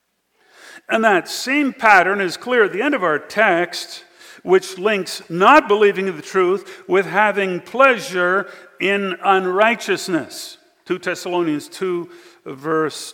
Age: 50-69